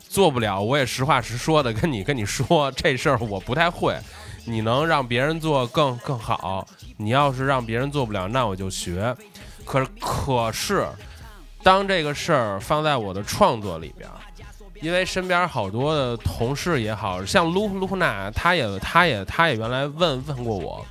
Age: 20-39